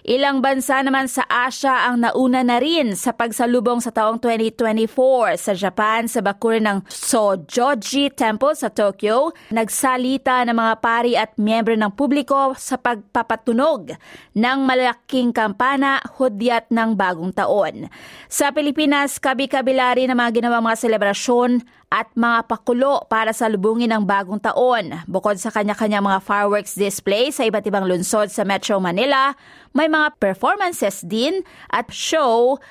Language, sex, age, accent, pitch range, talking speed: Filipino, female, 20-39, native, 215-260 Hz, 140 wpm